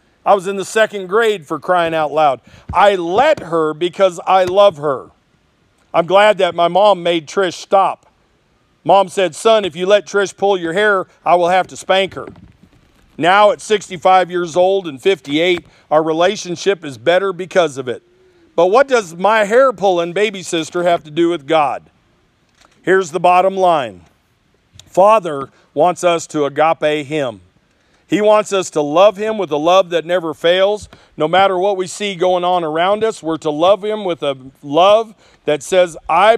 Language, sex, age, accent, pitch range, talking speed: English, male, 50-69, American, 160-200 Hz, 180 wpm